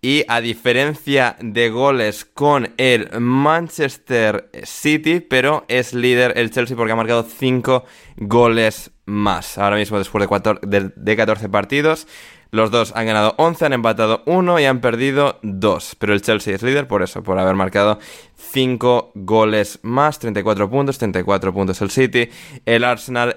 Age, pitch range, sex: 20-39, 100-120 Hz, male